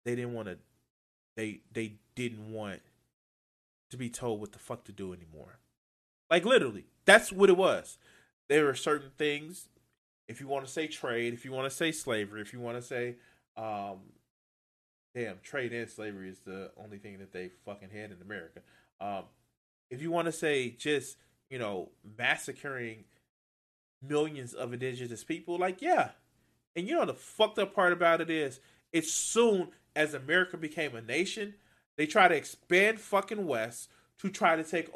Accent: American